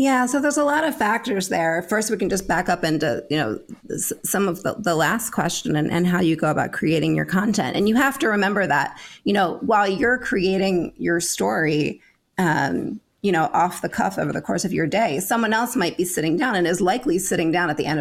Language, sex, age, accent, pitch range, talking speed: English, female, 30-49, American, 160-225 Hz, 235 wpm